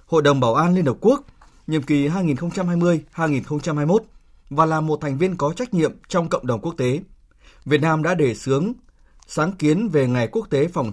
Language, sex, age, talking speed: Vietnamese, male, 20-39, 190 wpm